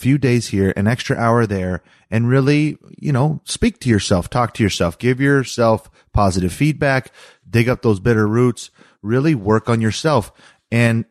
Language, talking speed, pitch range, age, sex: English, 165 wpm, 100-125 Hz, 30-49, male